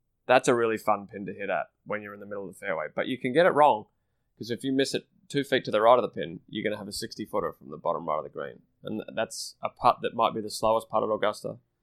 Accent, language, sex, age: Australian, English, male, 20-39